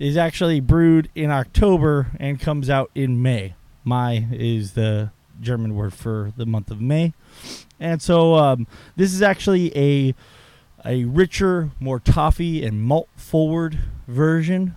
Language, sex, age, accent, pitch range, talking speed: English, male, 30-49, American, 120-165 Hz, 140 wpm